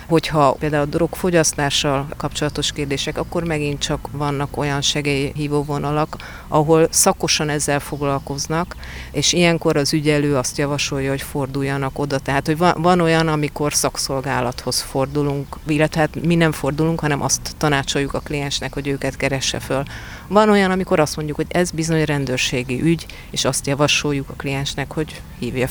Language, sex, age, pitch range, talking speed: Hungarian, female, 40-59, 140-160 Hz, 150 wpm